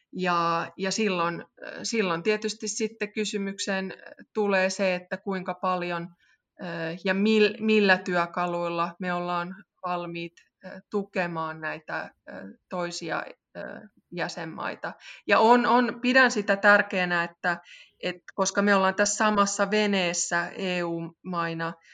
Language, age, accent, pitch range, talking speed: Finnish, 20-39, native, 175-205 Hz, 95 wpm